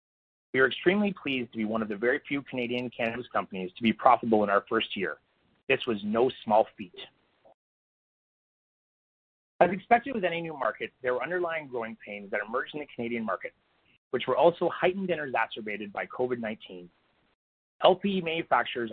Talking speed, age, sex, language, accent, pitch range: 170 wpm, 30-49, male, English, American, 110-160 Hz